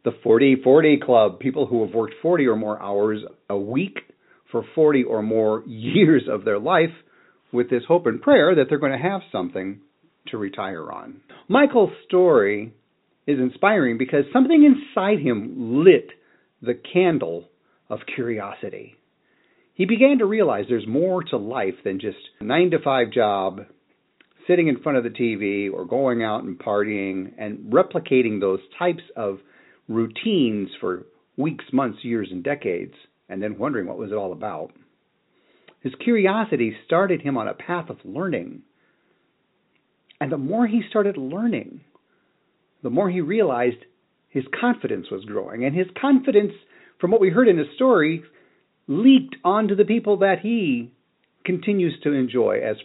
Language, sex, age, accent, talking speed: English, male, 40-59, American, 155 wpm